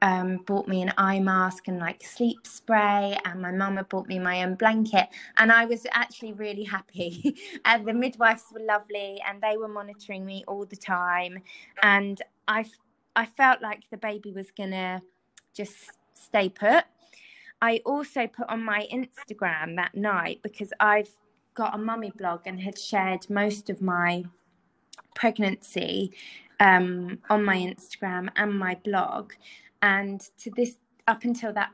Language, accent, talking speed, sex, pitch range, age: English, British, 160 wpm, female, 195-220 Hz, 20-39